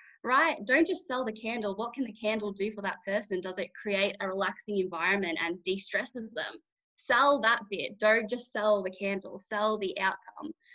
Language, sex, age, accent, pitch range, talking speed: English, female, 10-29, Australian, 190-225 Hz, 190 wpm